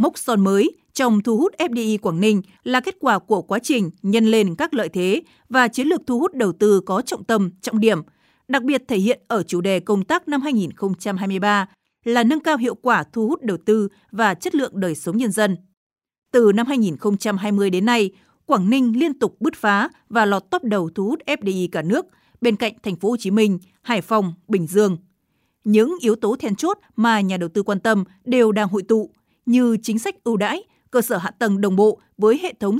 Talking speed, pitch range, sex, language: 220 wpm, 200-245 Hz, female, Vietnamese